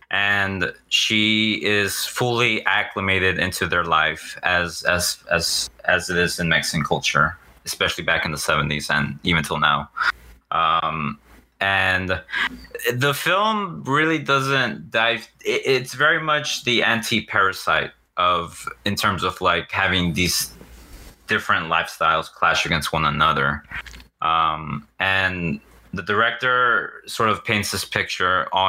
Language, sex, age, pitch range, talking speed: English, male, 20-39, 90-105 Hz, 130 wpm